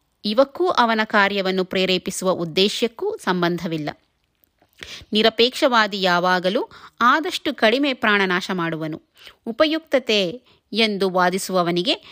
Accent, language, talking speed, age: native, Kannada, 75 wpm, 20-39